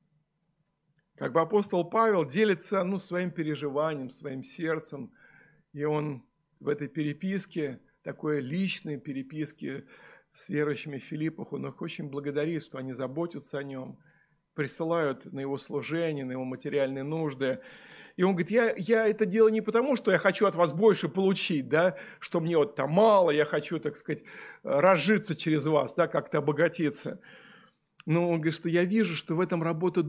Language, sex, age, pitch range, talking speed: Russian, male, 50-69, 150-200 Hz, 160 wpm